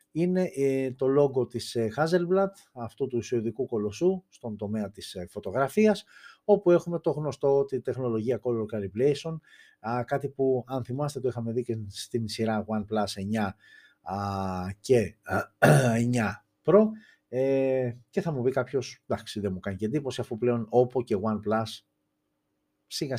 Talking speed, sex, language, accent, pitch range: 135 wpm, male, Greek, native, 105-145 Hz